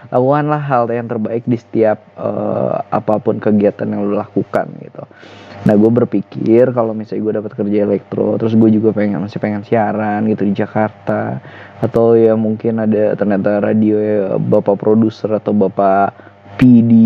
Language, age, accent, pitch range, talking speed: Indonesian, 20-39, native, 105-145 Hz, 155 wpm